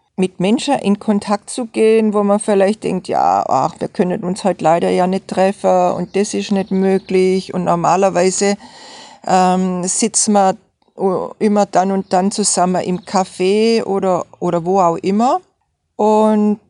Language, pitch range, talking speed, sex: German, 185-220 Hz, 155 wpm, female